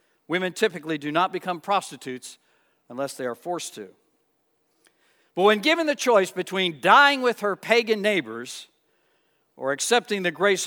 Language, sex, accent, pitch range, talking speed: English, male, American, 170-225 Hz, 145 wpm